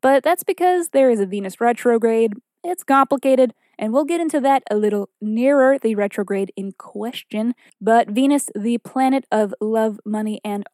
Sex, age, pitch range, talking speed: female, 20-39, 210-270 Hz, 170 wpm